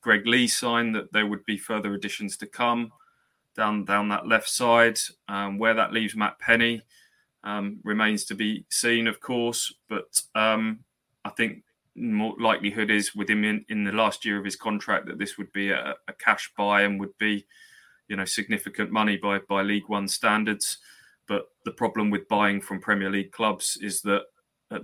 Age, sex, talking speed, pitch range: 20-39, male, 185 wpm, 100-110 Hz